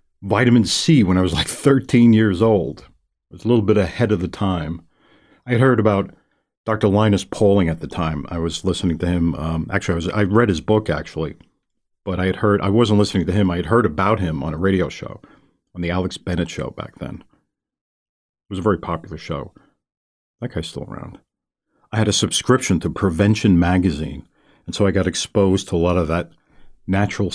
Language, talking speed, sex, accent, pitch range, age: English, 205 wpm, male, American, 85-115 Hz, 50-69